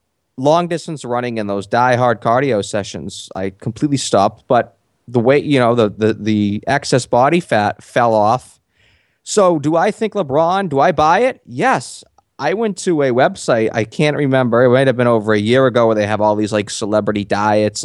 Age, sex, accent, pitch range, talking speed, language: 30-49, male, American, 105-135 Hz, 195 wpm, English